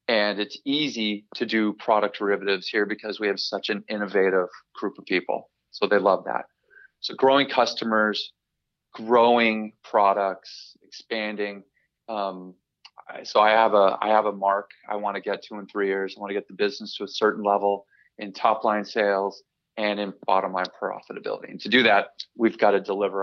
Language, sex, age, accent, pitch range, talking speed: English, male, 30-49, American, 100-115 Hz, 185 wpm